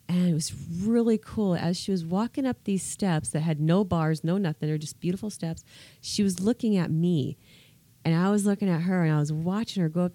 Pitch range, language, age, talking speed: 150-190 Hz, English, 30-49, 235 wpm